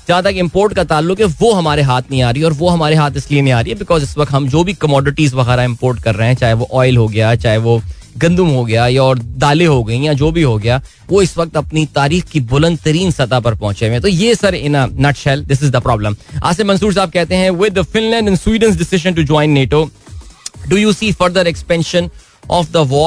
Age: 20-39